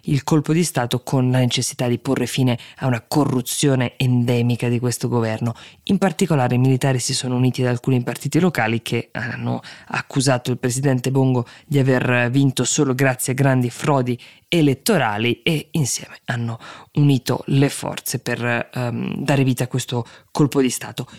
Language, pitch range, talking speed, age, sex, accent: Italian, 120-140 Hz, 165 wpm, 20-39, female, native